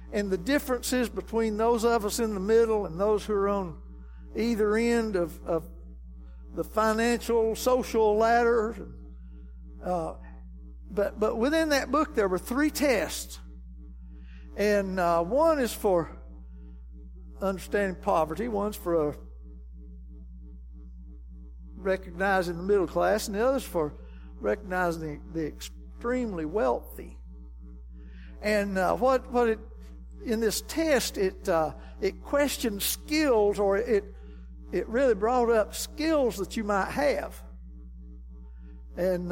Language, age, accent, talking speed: English, 60-79, American, 125 wpm